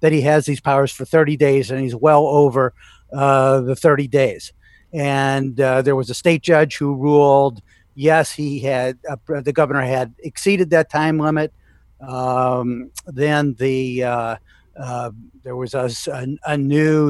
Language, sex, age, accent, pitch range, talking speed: English, male, 50-69, American, 130-155 Hz, 160 wpm